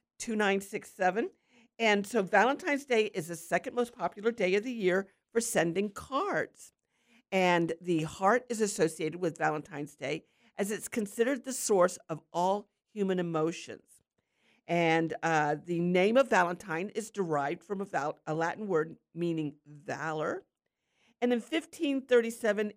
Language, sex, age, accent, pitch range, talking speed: English, female, 50-69, American, 160-230 Hz, 135 wpm